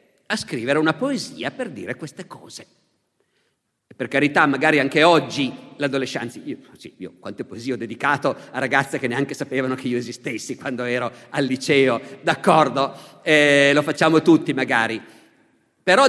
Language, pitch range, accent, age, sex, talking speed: Italian, 145-210 Hz, native, 50-69, male, 145 wpm